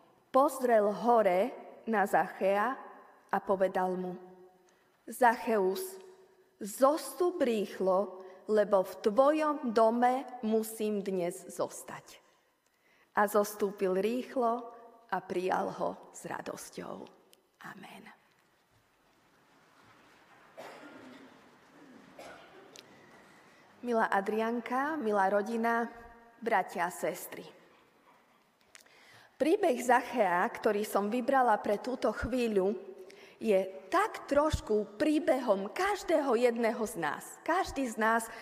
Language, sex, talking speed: Slovak, female, 80 wpm